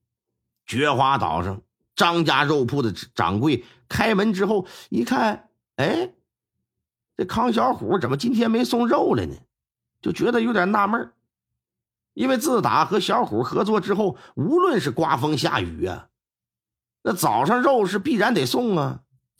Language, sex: Chinese, male